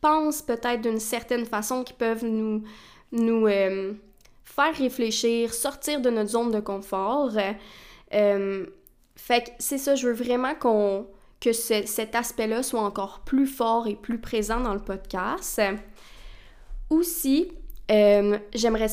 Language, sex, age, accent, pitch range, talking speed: French, female, 20-39, Canadian, 210-255 Hz, 135 wpm